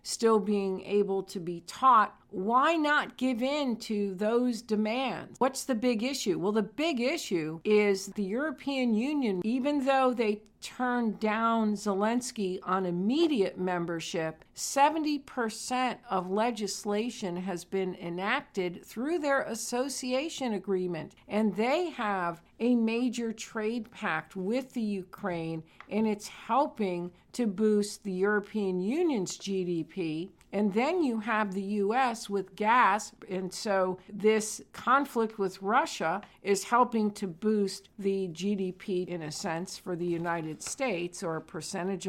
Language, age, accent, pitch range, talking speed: English, 50-69, American, 190-240 Hz, 135 wpm